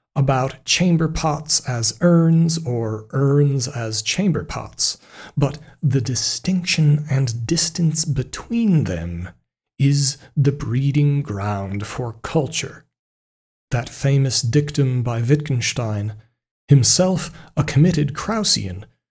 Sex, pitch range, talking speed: male, 120-150 Hz, 100 wpm